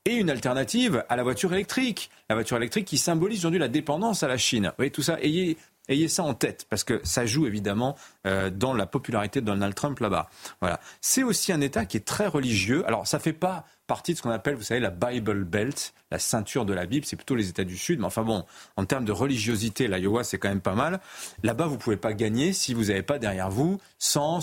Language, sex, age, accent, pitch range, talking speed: French, male, 30-49, French, 110-150 Hz, 255 wpm